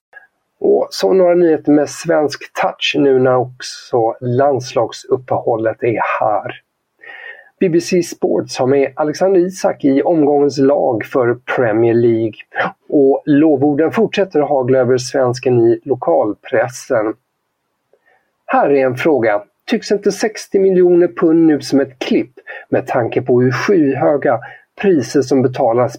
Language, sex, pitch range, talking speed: Swedish, male, 125-165 Hz, 125 wpm